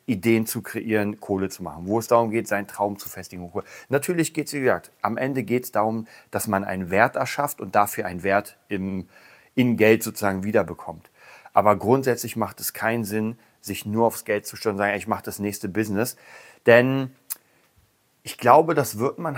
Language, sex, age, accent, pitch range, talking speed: German, male, 40-59, German, 100-130 Hz, 195 wpm